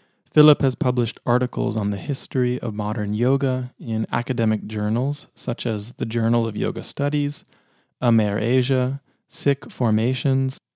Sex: male